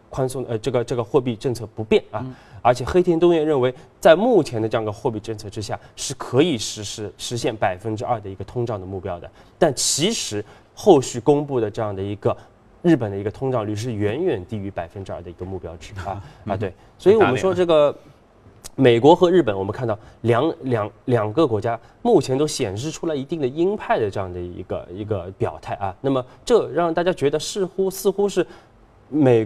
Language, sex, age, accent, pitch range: Chinese, male, 20-39, native, 100-130 Hz